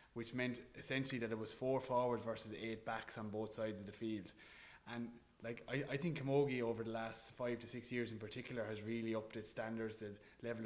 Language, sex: English, male